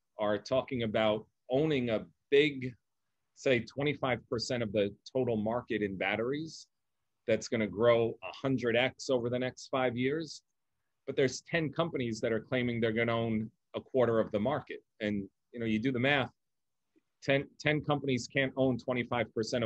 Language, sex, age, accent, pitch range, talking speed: English, male, 40-59, American, 110-130 Hz, 160 wpm